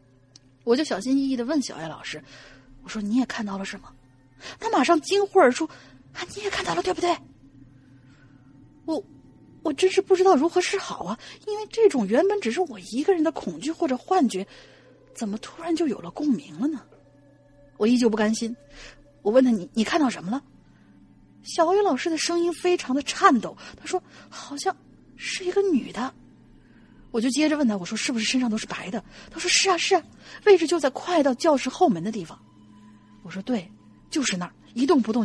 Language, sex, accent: Chinese, female, native